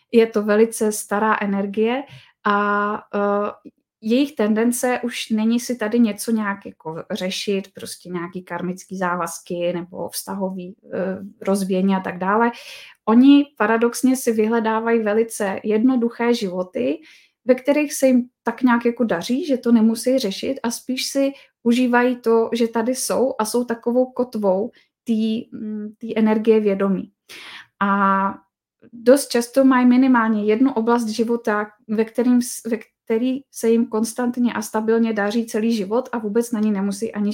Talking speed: 140 wpm